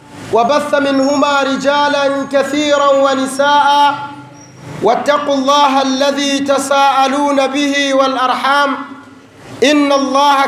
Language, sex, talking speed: Swahili, male, 75 wpm